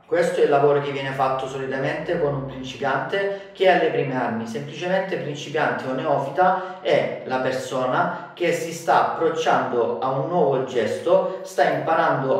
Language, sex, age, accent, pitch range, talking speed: Italian, male, 40-59, native, 135-180 Hz, 160 wpm